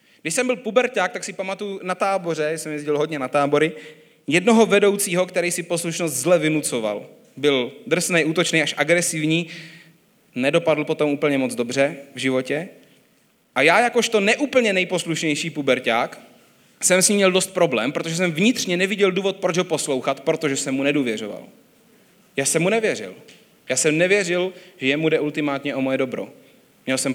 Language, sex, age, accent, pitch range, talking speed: Czech, male, 30-49, native, 135-180 Hz, 160 wpm